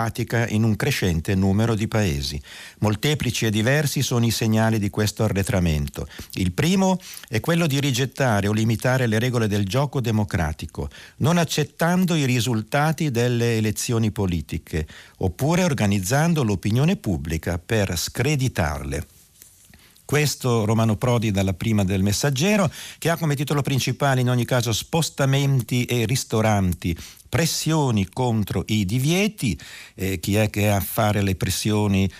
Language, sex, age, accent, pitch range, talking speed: Italian, male, 50-69, native, 95-135 Hz, 135 wpm